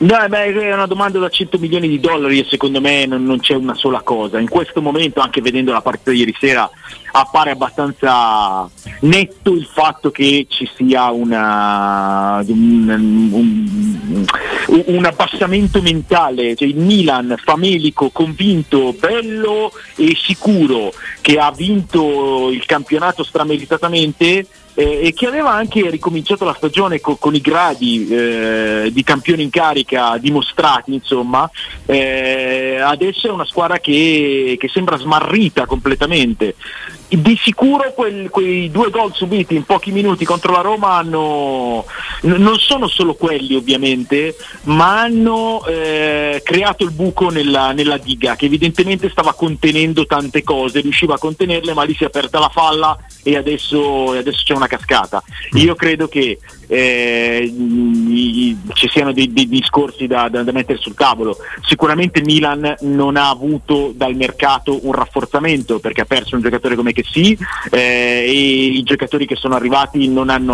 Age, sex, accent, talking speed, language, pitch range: 40-59, male, native, 150 wpm, Italian, 130-180 Hz